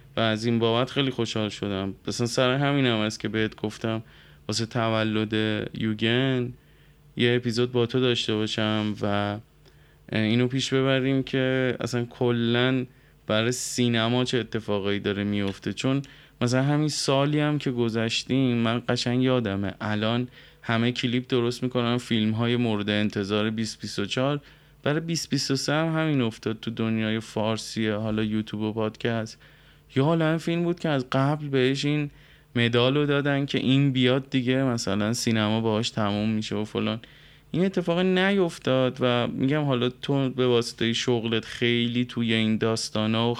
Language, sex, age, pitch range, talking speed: Persian, male, 20-39, 110-135 Hz, 145 wpm